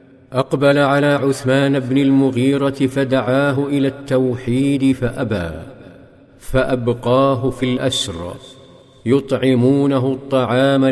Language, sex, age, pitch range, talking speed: Arabic, male, 50-69, 130-135 Hz, 75 wpm